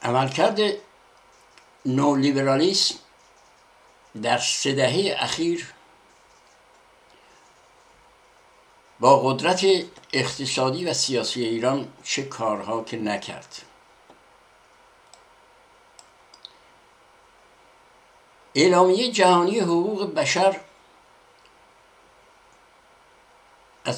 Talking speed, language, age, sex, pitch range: 55 wpm, Persian, 60-79, male, 130-190 Hz